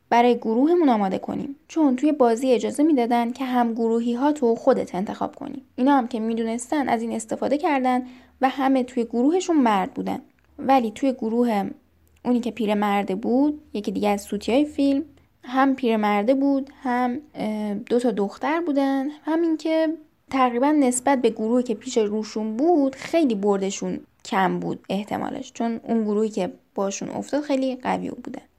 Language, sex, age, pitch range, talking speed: Persian, female, 10-29, 220-280 Hz, 160 wpm